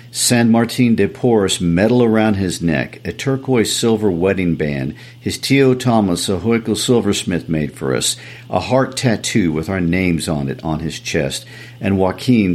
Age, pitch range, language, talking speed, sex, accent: 50-69, 80-110 Hz, English, 165 wpm, male, American